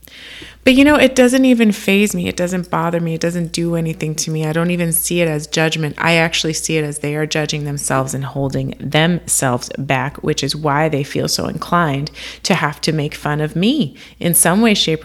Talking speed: 225 wpm